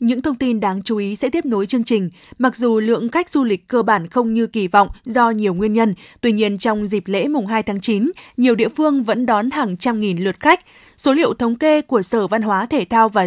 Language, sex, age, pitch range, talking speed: Vietnamese, female, 20-39, 210-260 Hz, 260 wpm